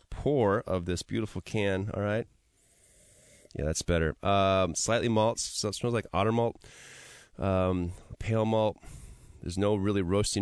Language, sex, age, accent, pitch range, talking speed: English, male, 30-49, American, 90-105 Hz, 145 wpm